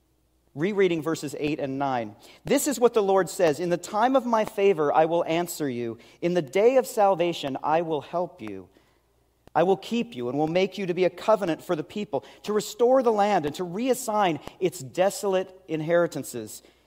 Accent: American